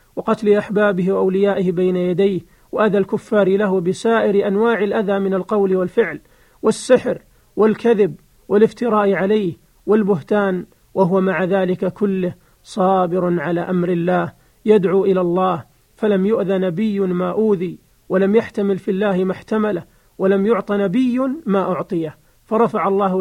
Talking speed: 125 wpm